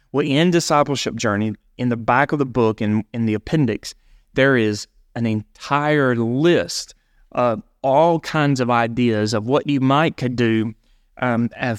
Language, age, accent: English, 30-49, American